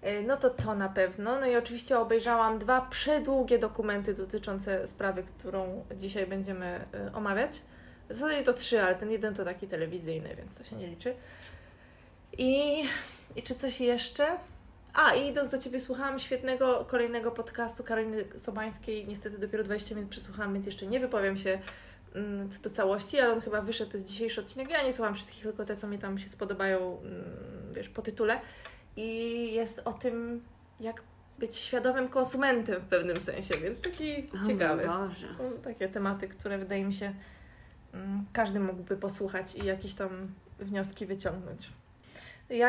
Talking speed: 160 wpm